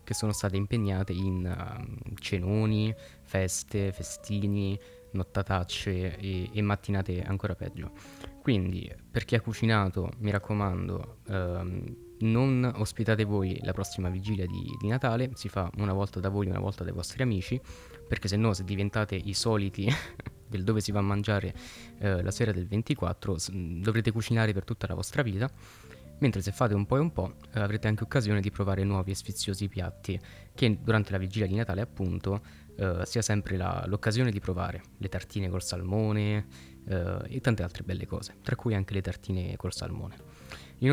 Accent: native